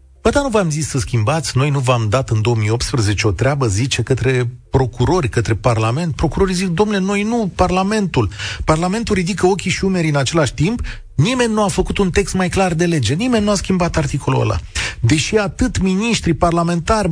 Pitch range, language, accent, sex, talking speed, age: 125-195 Hz, Romanian, native, male, 190 wpm, 40-59